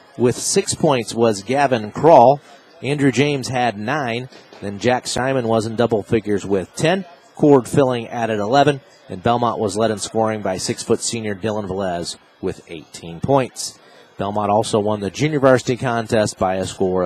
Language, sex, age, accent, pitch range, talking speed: English, male, 40-59, American, 100-130 Hz, 165 wpm